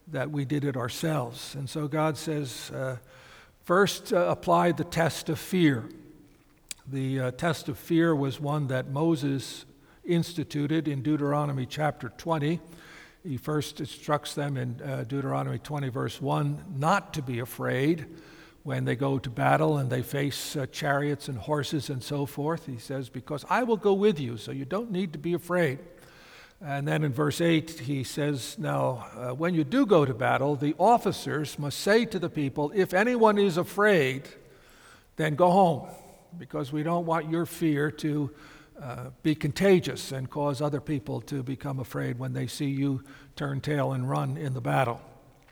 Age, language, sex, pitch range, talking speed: 60-79, English, male, 135-165 Hz, 175 wpm